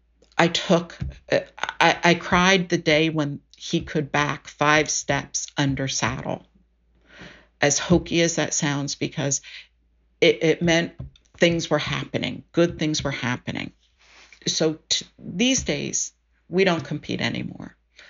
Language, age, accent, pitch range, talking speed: English, 50-69, American, 145-180 Hz, 125 wpm